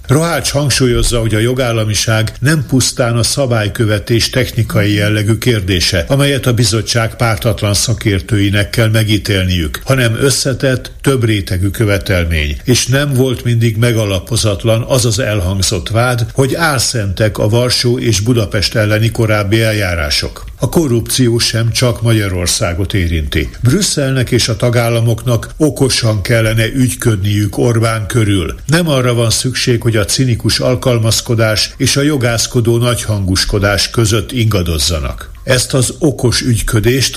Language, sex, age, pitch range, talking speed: Hungarian, male, 60-79, 105-125 Hz, 120 wpm